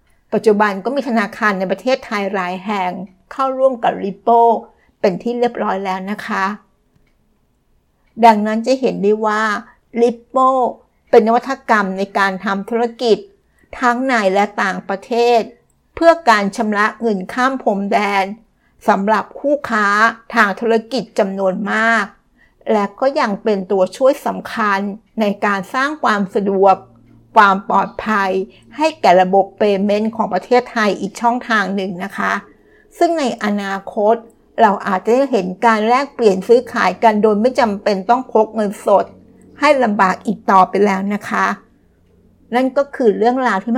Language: Thai